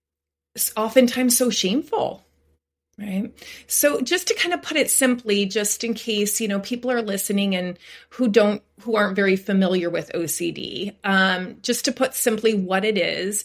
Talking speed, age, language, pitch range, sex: 170 wpm, 30-49, English, 185-230 Hz, female